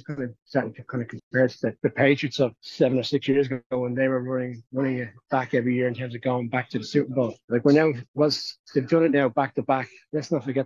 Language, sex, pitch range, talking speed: English, male, 130-145 Hz, 260 wpm